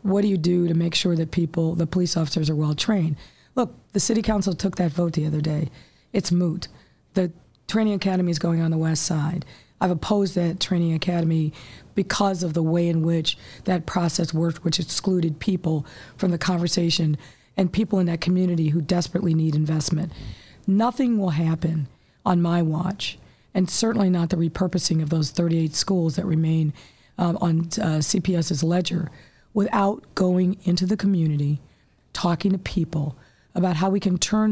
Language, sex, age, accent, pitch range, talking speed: English, female, 40-59, American, 160-185 Hz, 170 wpm